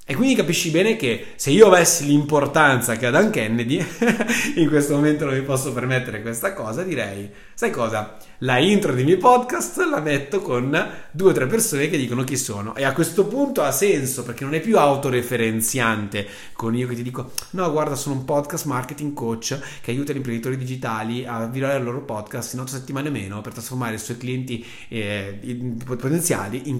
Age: 30-49